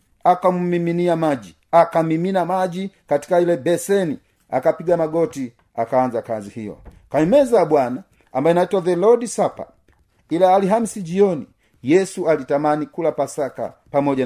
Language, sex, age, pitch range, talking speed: Swahili, male, 40-59, 145-185 Hz, 120 wpm